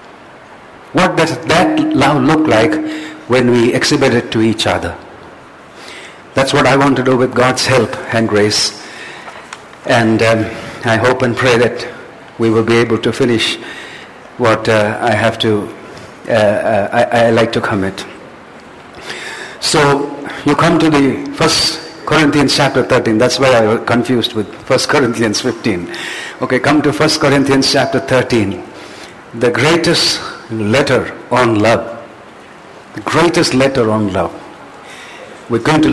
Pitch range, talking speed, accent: 115-145 Hz, 145 wpm, Indian